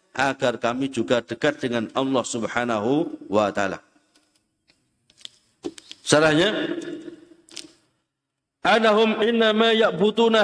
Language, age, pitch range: Indonesian, 50-69, 150-210 Hz